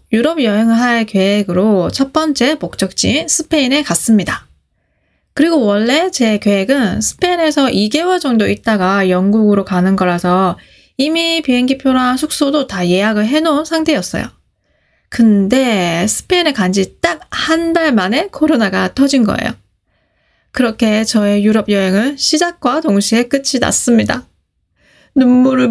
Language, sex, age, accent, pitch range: Korean, female, 20-39, native, 200-280 Hz